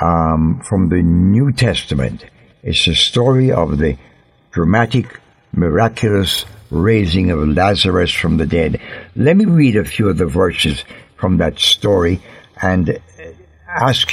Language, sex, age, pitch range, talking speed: English, male, 60-79, 85-115 Hz, 130 wpm